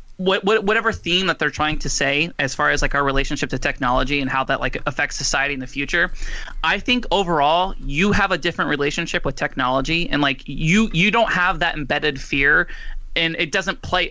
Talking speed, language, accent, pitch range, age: 200 wpm, English, American, 140-175 Hz, 20-39